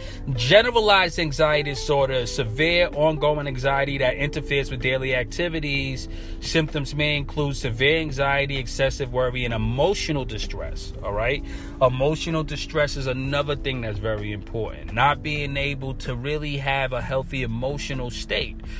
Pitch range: 120-150 Hz